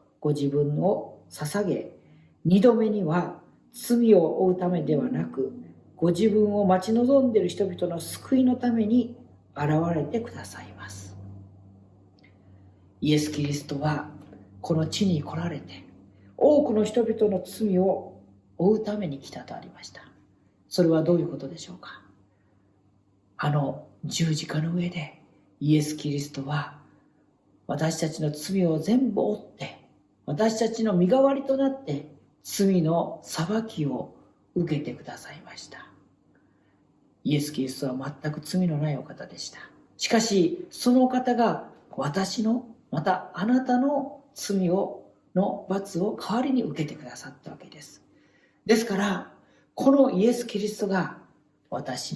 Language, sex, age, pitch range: Japanese, female, 40-59, 145-220 Hz